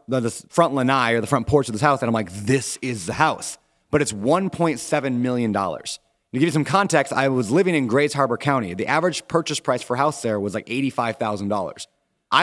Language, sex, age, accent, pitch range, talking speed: English, male, 30-49, American, 115-155 Hz, 210 wpm